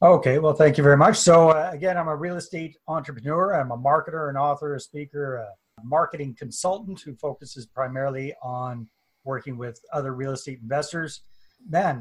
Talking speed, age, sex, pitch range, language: 175 wpm, 30-49, male, 130-155 Hz, English